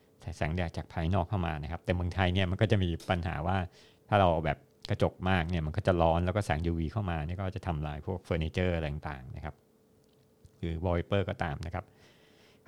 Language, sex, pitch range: Thai, male, 85-105 Hz